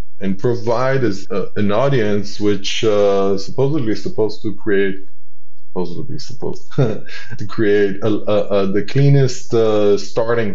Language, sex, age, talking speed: English, male, 20-39, 135 wpm